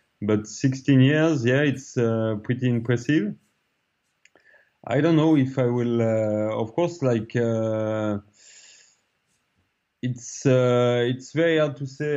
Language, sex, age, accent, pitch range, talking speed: English, male, 20-39, French, 110-130 Hz, 130 wpm